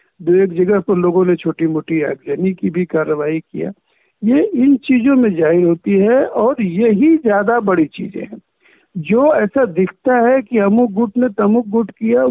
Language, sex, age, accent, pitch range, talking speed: Hindi, male, 60-79, native, 185-235 Hz, 180 wpm